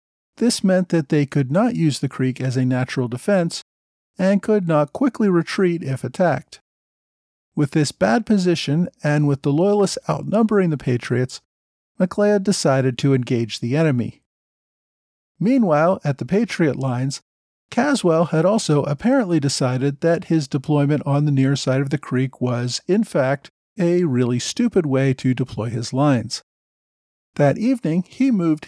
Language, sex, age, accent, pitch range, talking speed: English, male, 40-59, American, 130-190 Hz, 150 wpm